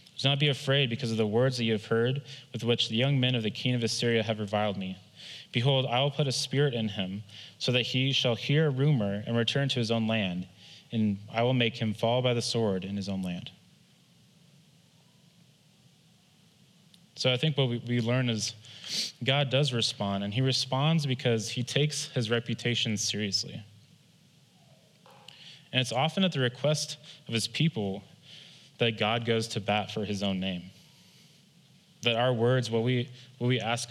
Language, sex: English, male